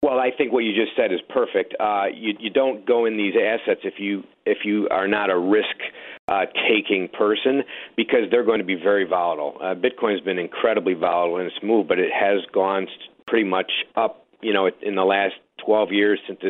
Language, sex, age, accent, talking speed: English, male, 50-69, American, 215 wpm